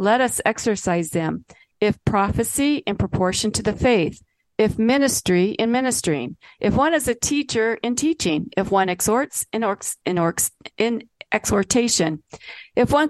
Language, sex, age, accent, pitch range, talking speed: English, female, 50-69, American, 185-245 Hz, 150 wpm